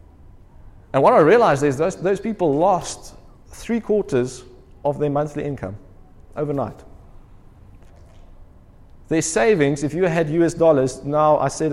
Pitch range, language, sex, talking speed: 125-160 Hz, English, male, 130 wpm